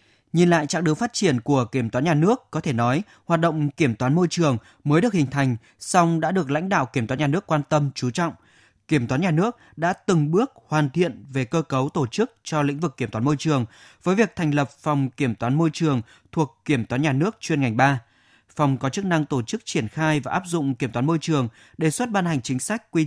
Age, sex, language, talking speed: 20-39, male, Vietnamese, 250 wpm